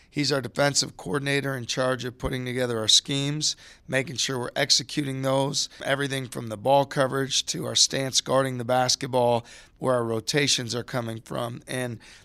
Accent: American